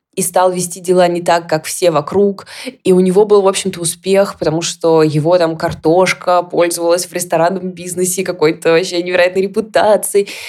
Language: Russian